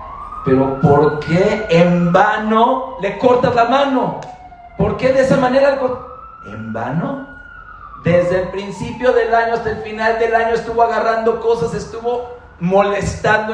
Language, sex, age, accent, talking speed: English, male, 50-69, Mexican, 140 wpm